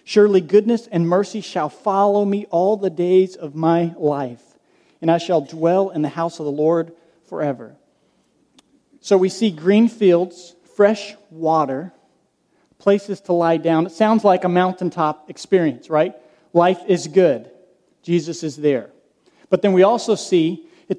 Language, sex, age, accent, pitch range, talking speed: English, male, 40-59, American, 170-205 Hz, 155 wpm